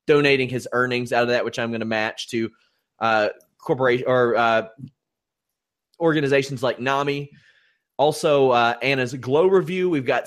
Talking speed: 150 wpm